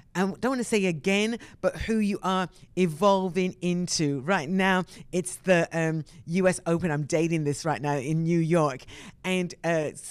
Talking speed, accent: 170 wpm, British